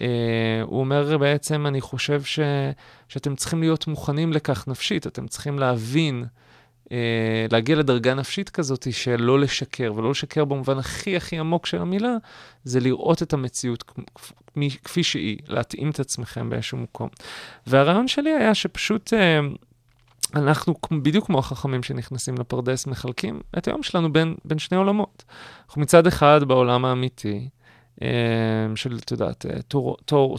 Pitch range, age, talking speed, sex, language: 120-155 Hz, 30-49, 140 wpm, male, Hebrew